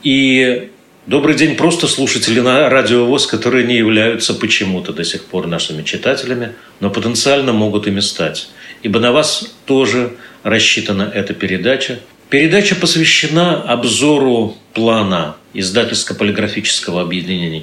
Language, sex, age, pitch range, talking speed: Russian, male, 50-69, 105-140 Hz, 115 wpm